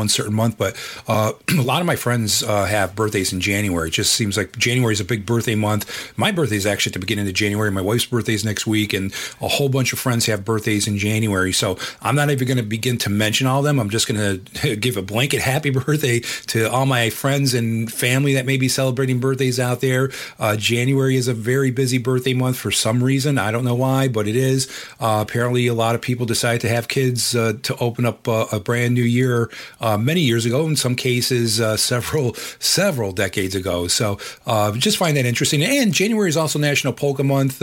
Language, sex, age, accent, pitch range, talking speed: English, male, 40-59, American, 110-130 Hz, 235 wpm